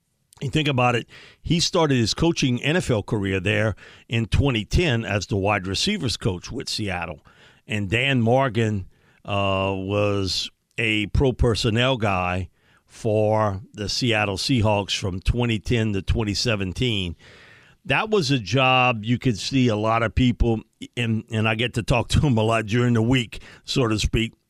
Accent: American